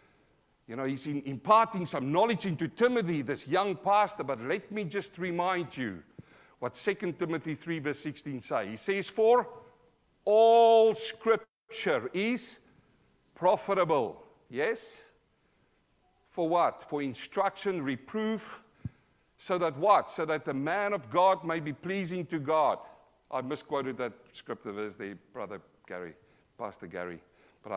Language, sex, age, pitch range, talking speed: English, male, 50-69, 125-180 Hz, 135 wpm